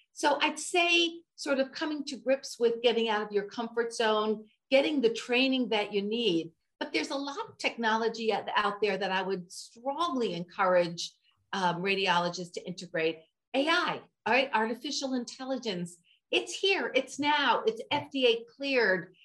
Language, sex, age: English, female, 50-69